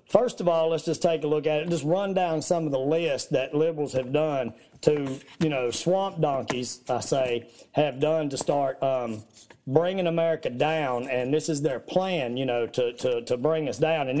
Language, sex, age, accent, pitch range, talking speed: English, male, 40-59, American, 140-170 Hz, 210 wpm